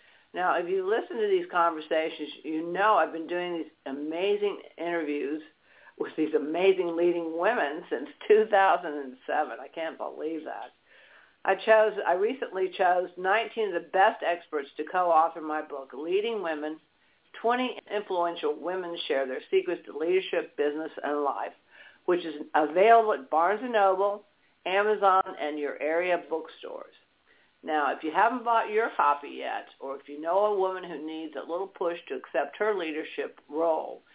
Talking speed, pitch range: 155 wpm, 155-220 Hz